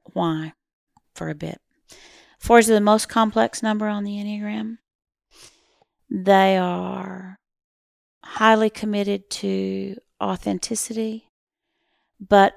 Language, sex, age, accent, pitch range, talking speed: English, female, 40-59, American, 175-220 Hz, 95 wpm